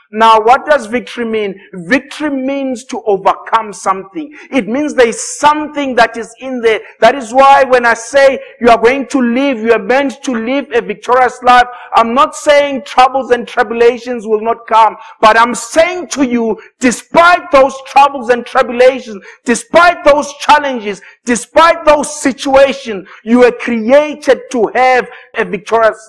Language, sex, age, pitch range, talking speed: English, male, 50-69, 225-275 Hz, 160 wpm